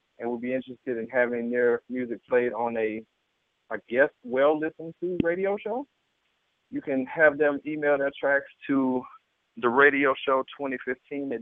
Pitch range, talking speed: 125-140 Hz, 140 wpm